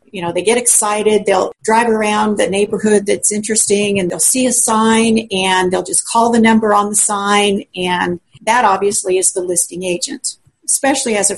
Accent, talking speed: American, 190 wpm